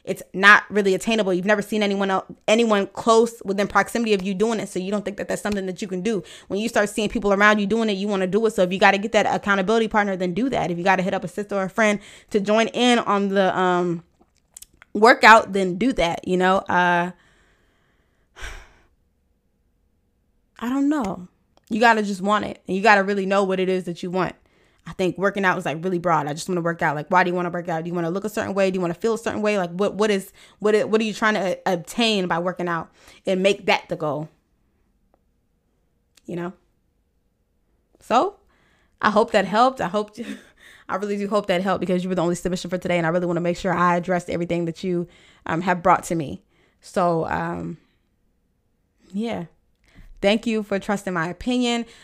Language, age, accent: English, 20-39, American